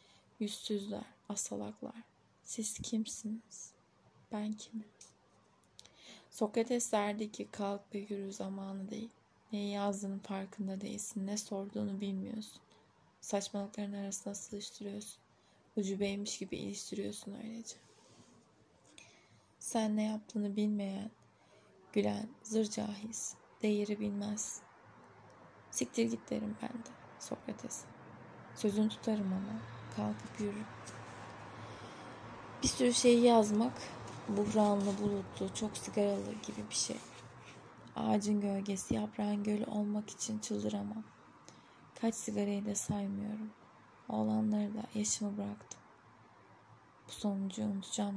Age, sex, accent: 10-29, female, native